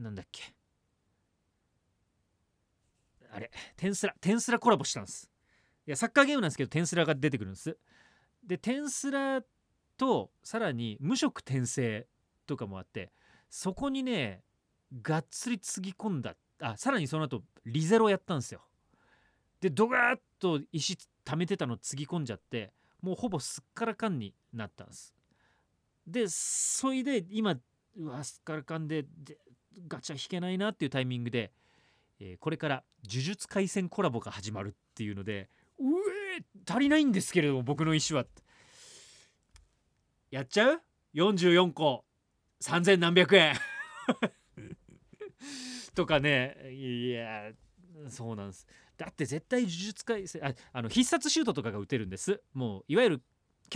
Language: Japanese